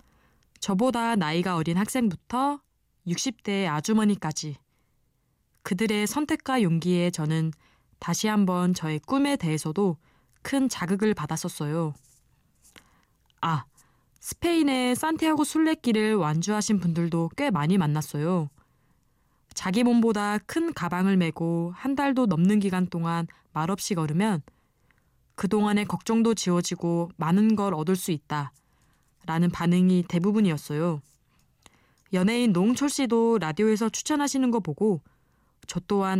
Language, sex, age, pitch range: Korean, female, 20-39, 165-230 Hz